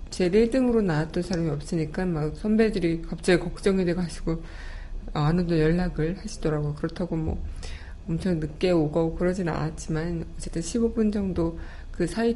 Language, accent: Korean, native